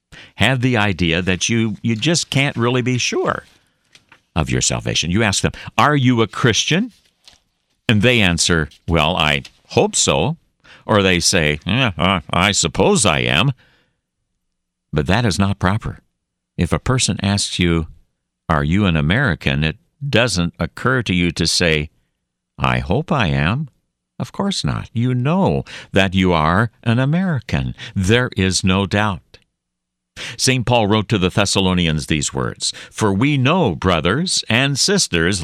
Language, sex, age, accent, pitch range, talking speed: English, male, 60-79, American, 80-115 Hz, 150 wpm